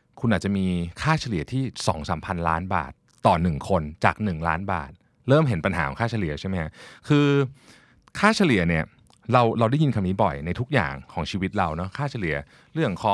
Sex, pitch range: male, 85-125 Hz